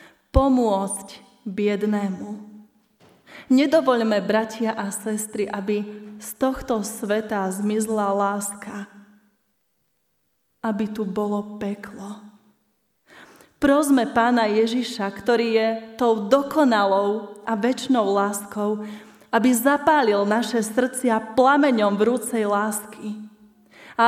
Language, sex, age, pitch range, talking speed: Slovak, female, 20-39, 200-230 Hz, 85 wpm